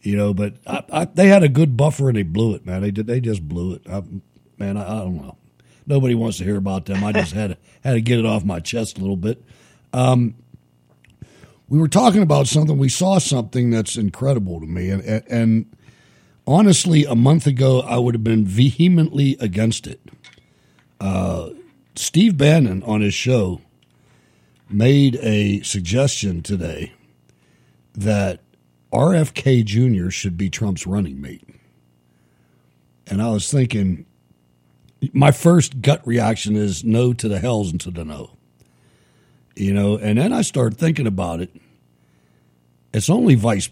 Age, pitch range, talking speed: 60-79, 90-130 Hz, 165 wpm